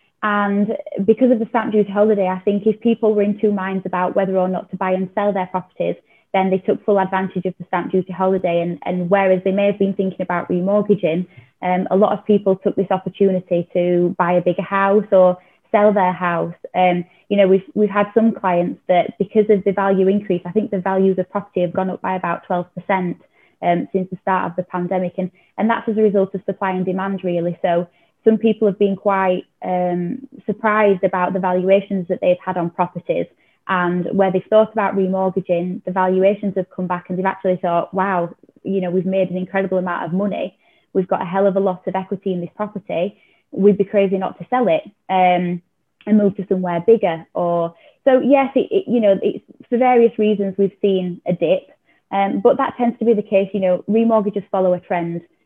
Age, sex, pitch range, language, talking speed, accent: 20-39, female, 180-205 Hz, English, 220 wpm, British